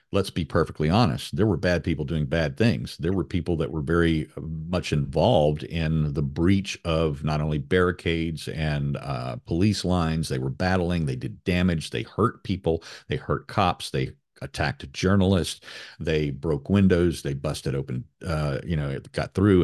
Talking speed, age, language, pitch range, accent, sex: 175 wpm, 50-69, English, 75-95 Hz, American, male